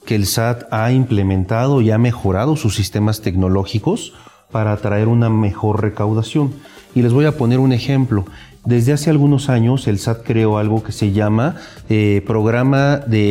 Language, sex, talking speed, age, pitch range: Spanish, male, 165 wpm, 40-59, 110-140 Hz